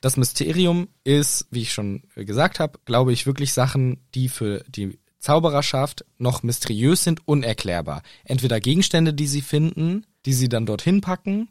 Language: German